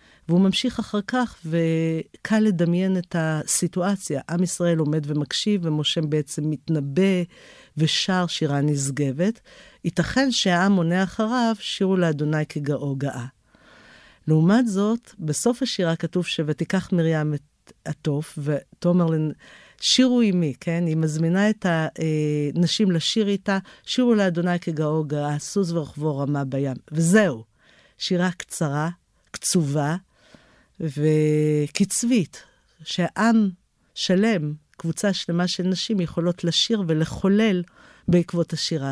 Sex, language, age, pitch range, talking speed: female, Hebrew, 50-69, 150-190 Hz, 105 wpm